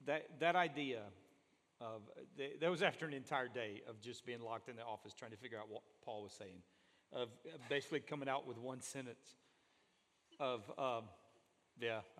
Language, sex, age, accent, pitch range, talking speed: English, male, 40-59, American, 130-185 Hz, 170 wpm